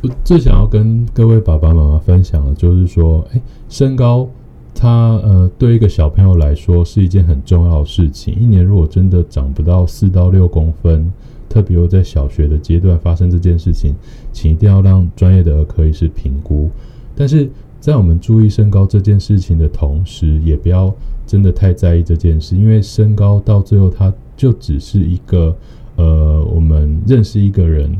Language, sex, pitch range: Chinese, male, 80-100 Hz